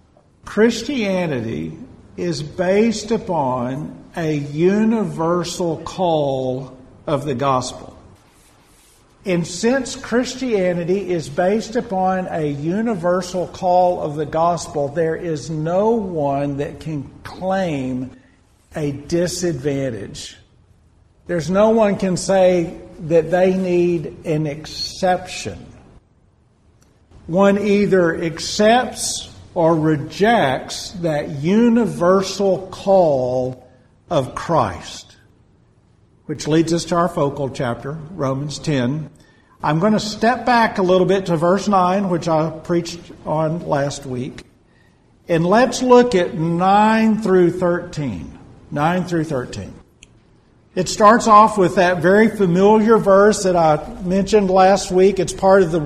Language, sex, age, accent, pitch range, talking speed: English, male, 50-69, American, 150-195 Hz, 110 wpm